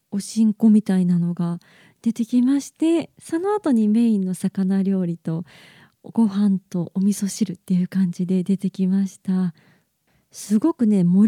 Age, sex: 20-39, female